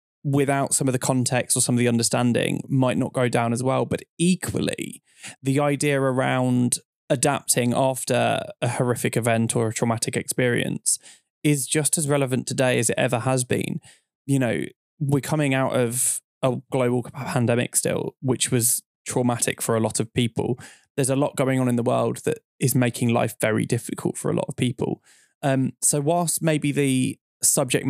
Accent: British